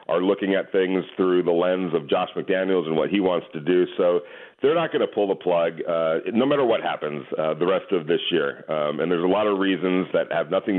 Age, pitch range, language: 40-59, 85-105 Hz, English